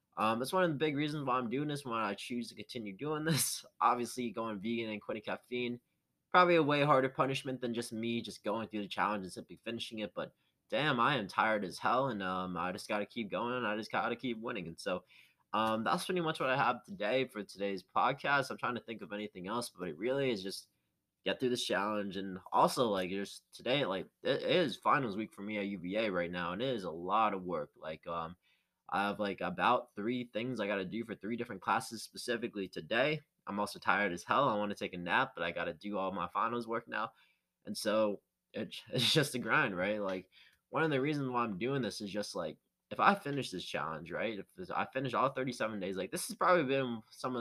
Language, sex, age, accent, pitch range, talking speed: English, male, 20-39, American, 100-130 Hz, 240 wpm